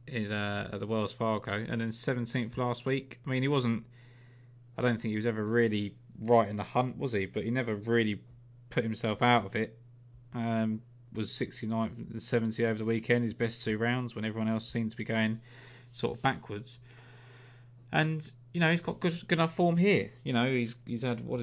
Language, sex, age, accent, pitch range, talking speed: English, male, 20-39, British, 110-120 Hz, 205 wpm